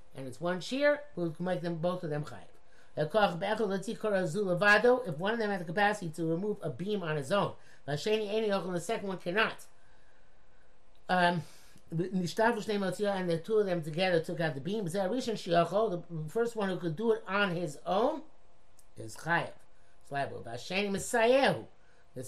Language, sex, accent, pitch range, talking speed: English, male, American, 150-200 Hz, 155 wpm